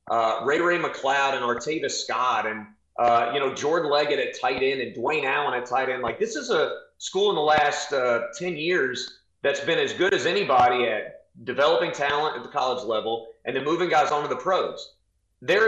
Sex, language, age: male, English, 30-49